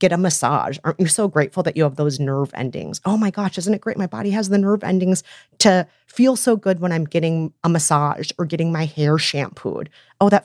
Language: English